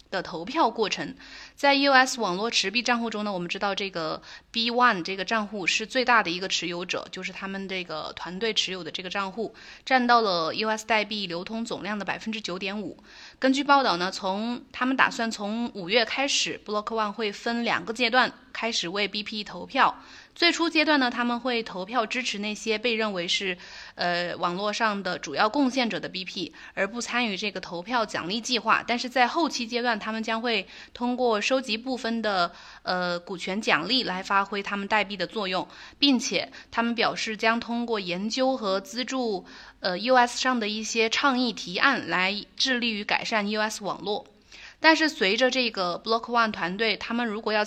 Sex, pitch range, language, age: female, 195-245 Hz, Chinese, 20-39